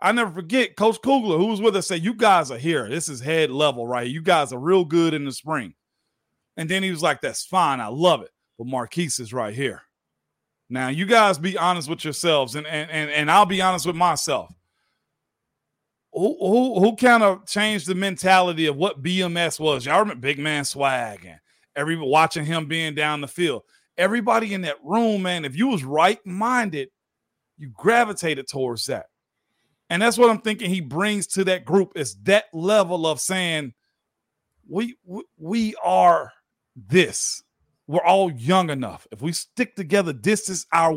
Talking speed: 185 wpm